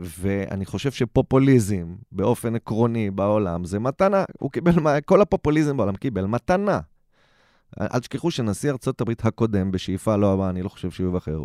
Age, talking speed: 30-49, 150 wpm